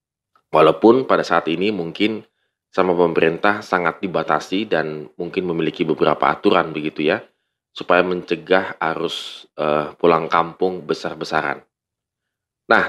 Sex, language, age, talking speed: male, Indonesian, 20-39, 110 wpm